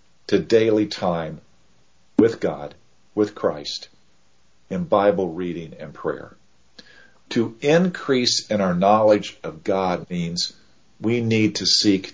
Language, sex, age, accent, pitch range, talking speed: English, male, 50-69, American, 80-115 Hz, 120 wpm